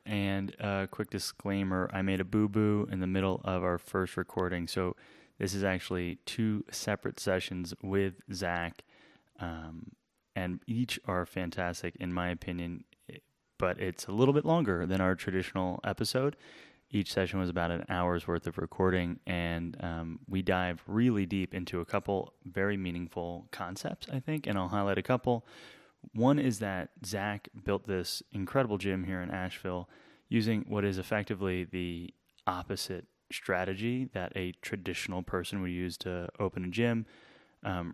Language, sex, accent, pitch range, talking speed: English, male, American, 90-105 Hz, 155 wpm